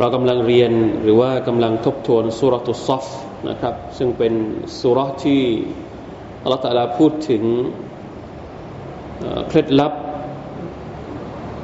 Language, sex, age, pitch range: Thai, male, 20-39, 115-130 Hz